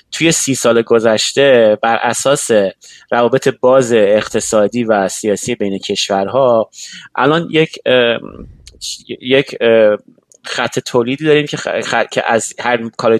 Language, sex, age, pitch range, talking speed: Persian, male, 30-49, 115-140 Hz, 115 wpm